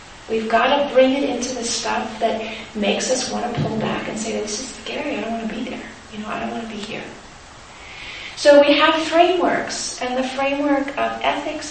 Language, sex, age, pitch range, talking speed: English, female, 40-59, 220-270 Hz, 220 wpm